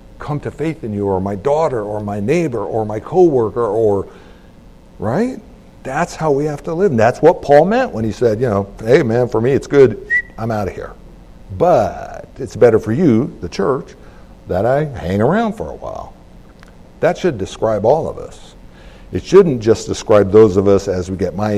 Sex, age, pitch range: male, 60-79, 95-160 Hz